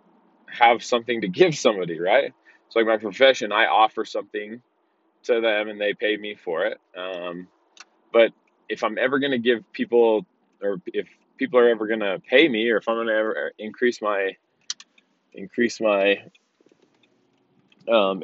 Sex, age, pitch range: male, 20-39, 100-115 Hz